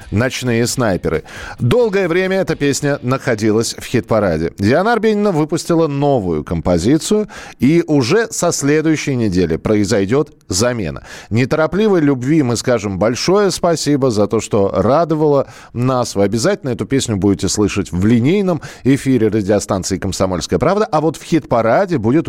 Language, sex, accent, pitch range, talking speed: Russian, male, native, 100-150 Hz, 130 wpm